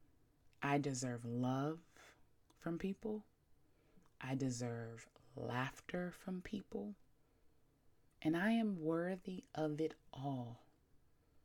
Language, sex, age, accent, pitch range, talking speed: English, female, 20-39, American, 135-165 Hz, 90 wpm